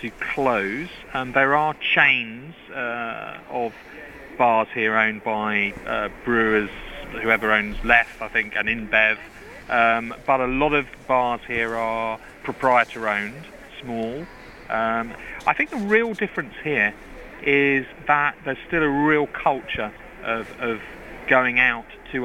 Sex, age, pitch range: male, 40-59, 115-145 Hz